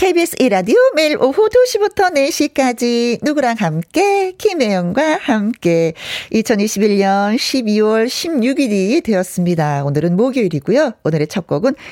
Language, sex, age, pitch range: Korean, female, 40-59, 185-275 Hz